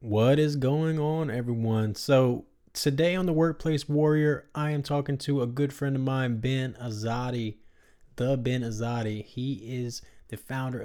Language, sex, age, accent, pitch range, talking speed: English, male, 20-39, American, 105-125 Hz, 160 wpm